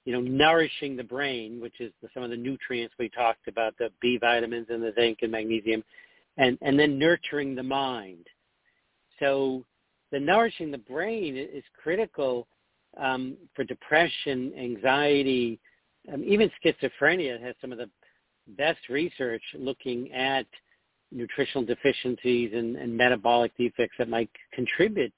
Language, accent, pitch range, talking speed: English, American, 115-135 Hz, 140 wpm